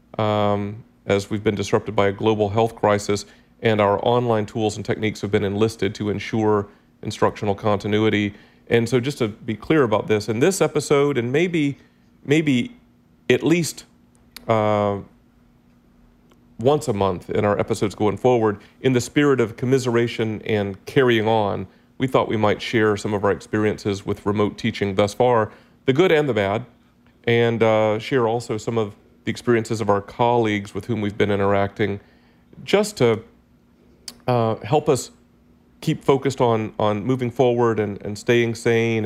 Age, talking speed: 40-59, 165 wpm